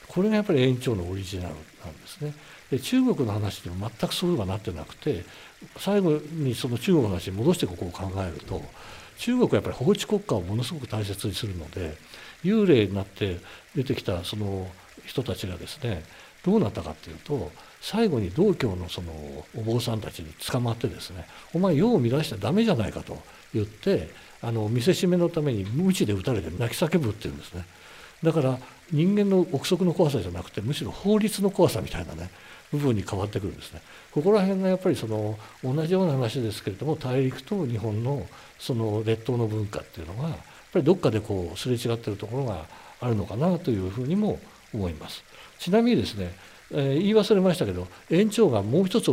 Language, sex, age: Japanese, male, 60-79